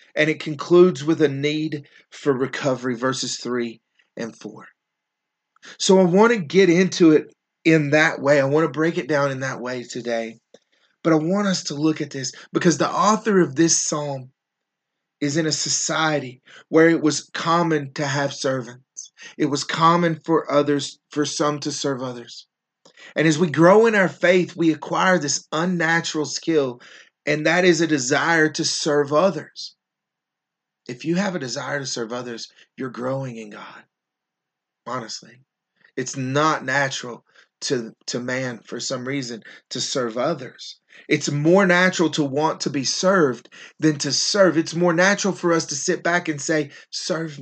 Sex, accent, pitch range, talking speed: male, American, 130-165 Hz, 170 wpm